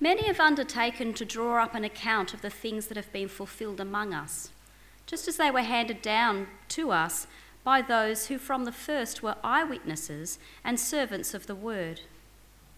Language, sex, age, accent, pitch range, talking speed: English, female, 30-49, Australian, 165-275 Hz, 180 wpm